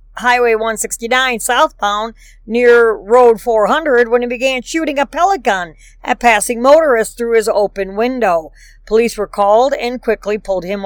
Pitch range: 210-260 Hz